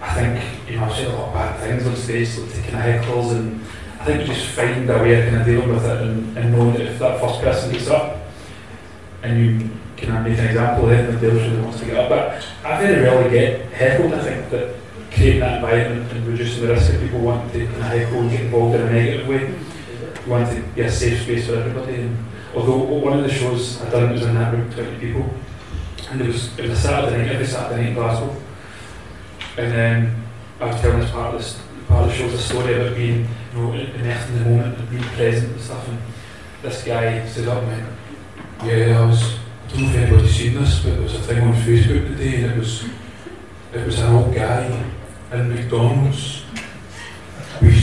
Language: English